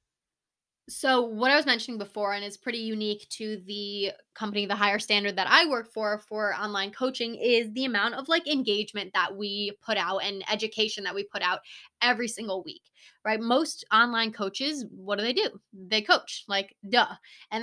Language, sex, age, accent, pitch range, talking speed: English, female, 10-29, American, 205-250 Hz, 185 wpm